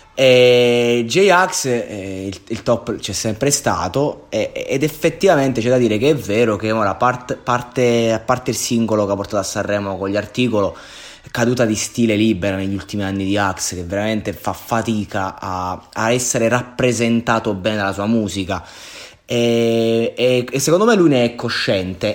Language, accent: Italian, native